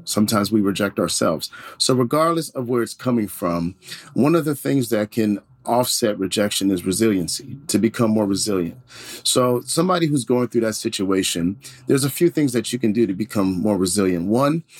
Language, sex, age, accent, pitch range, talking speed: English, male, 40-59, American, 120-155 Hz, 180 wpm